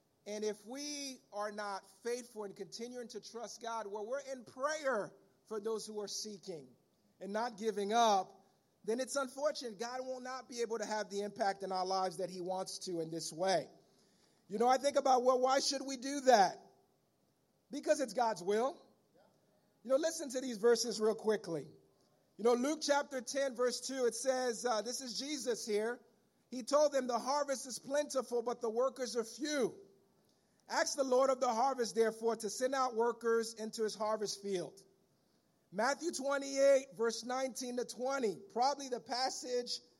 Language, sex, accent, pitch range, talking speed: English, male, American, 215-270 Hz, 180 wpm